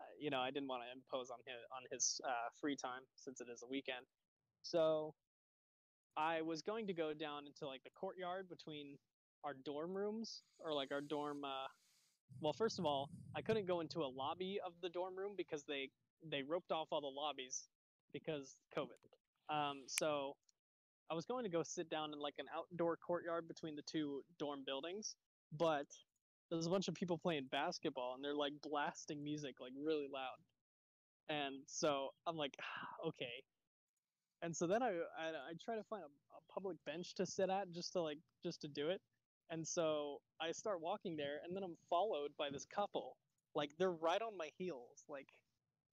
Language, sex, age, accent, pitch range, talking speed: English, male, 20-39, American, 140-175 Hz, 190 wpm